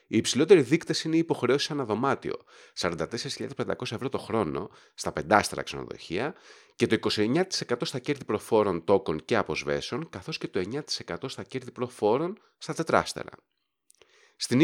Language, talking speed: Greek, 135 wpm